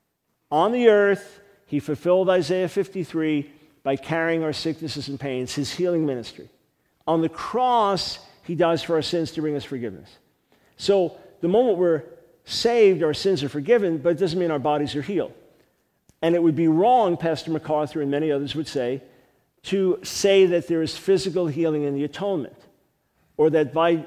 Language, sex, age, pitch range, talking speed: English, male, 50-69, 155-190 Hz, 175 wpm